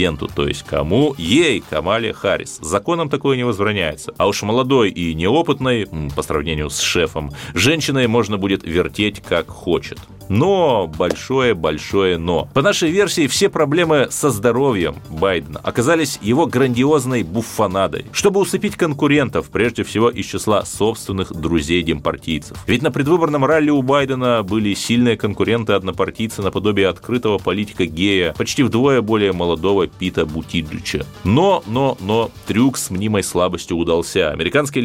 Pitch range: 90-135 Hz